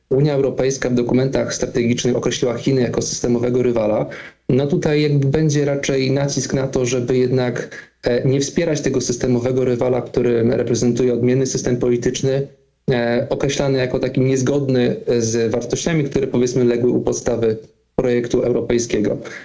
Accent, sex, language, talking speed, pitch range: native, male, Polish, 135 wpm, 120-140 Hz